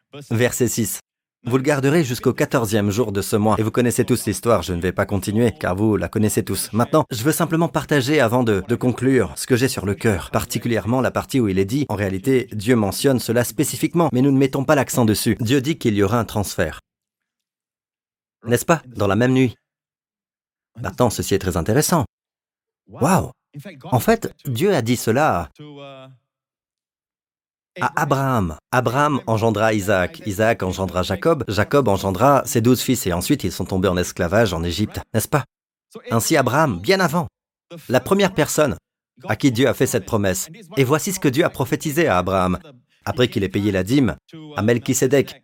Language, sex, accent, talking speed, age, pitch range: French, male, French, 185 wpm, 40-59, 105-145 Hz